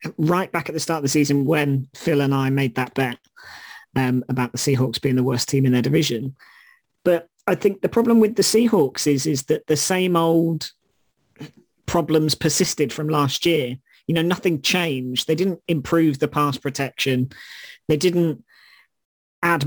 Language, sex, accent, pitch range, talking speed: English, male, British, 140-165 Hz, 175 wpm